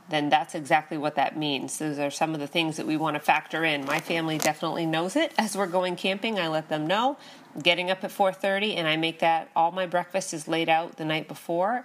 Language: English